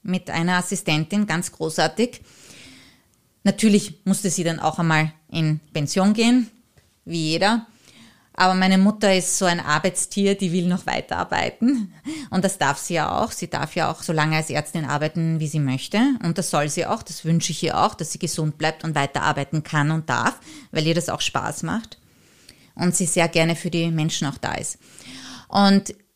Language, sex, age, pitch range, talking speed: German, female, 30-49, 170-215 Hz, 185 wpm